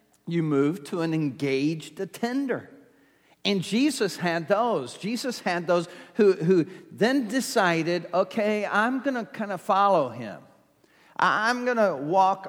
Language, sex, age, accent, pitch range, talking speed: English, male, 50-69, American, 165-215 Hz, 140 wpm